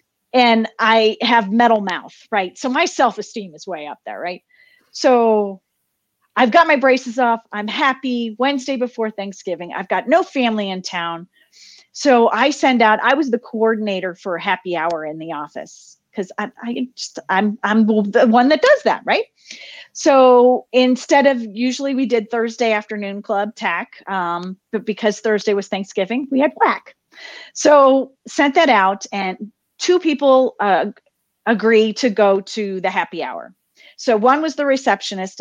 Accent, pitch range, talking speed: American, 200-260 Hz, 165 wpm